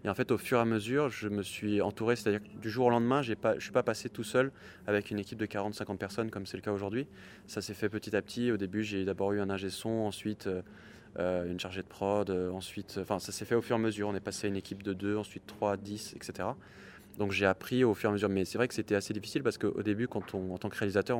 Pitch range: 100-110 Hz